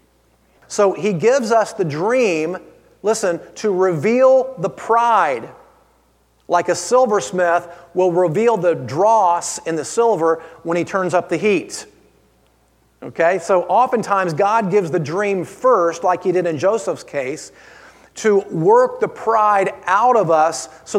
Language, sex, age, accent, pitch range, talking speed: English, male, 40-59, American, 155-195 Hz, 140 wpm